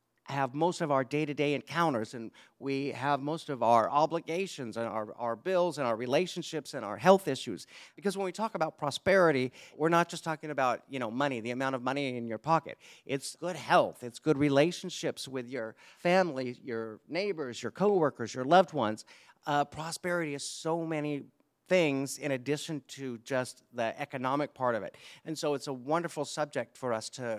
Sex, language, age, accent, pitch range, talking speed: male, English, 50-69, American, 130-160 Hz, 185 wpm